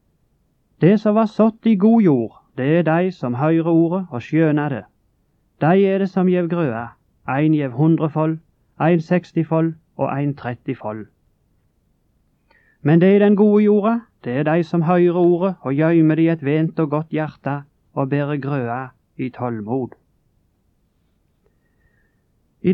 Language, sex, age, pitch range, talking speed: English, male, 30-49, 140-180 Hz, 155 wpm